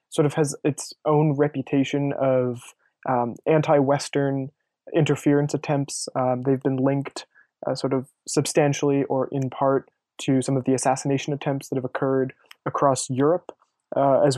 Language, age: English, 20-39